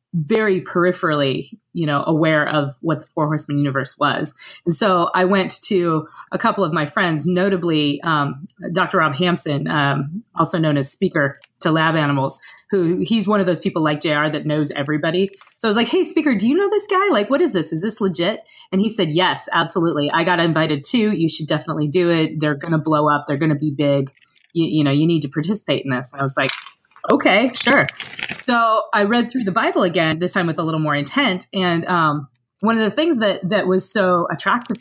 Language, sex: English, female